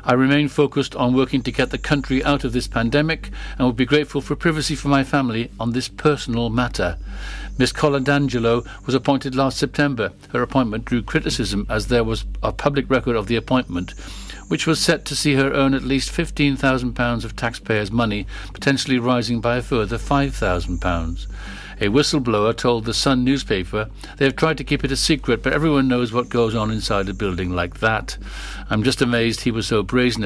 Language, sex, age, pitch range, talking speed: English, male, 50-69, 110-140 Hz, 190 wpm